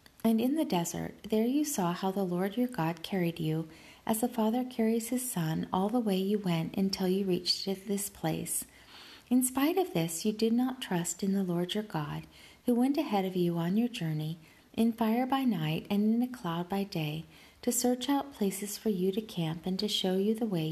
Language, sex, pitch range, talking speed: English, female, 170-230 Hz, 215 wpm